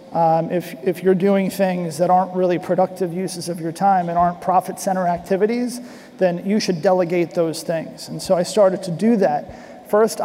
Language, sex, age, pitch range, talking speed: English, male, 40-59, 175-200 Hz, 195 wpm